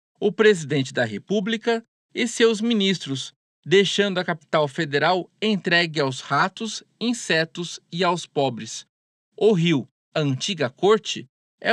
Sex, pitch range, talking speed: male, 140-200 Hz, 125 wpm